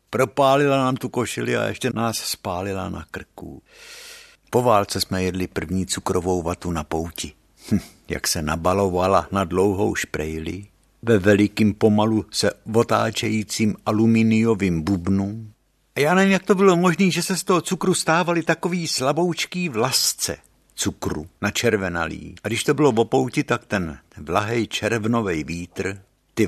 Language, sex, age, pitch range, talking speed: Czech, male, 60-79, 95-130 Hz, 145 wpm